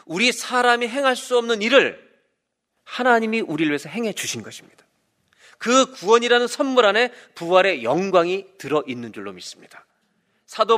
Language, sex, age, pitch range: Korean, male, 40-59, 160-240 Hz